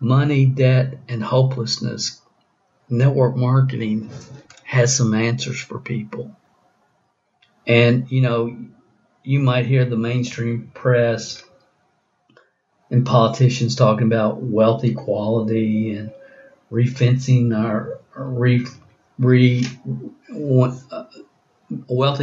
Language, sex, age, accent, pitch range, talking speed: English, male, 50-69, American, 115-130 Hz, 80 wpm